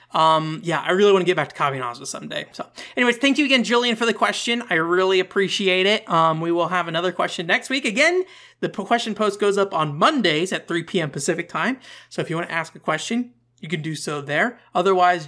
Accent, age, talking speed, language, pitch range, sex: American, 30-49, 235 wpm, English, 155-215 Hz, male